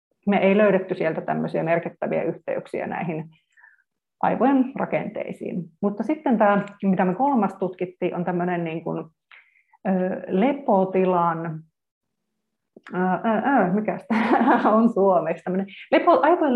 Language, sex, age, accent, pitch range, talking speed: Finnish, female, 30-49, native, 175-225 Hz, 75 wpm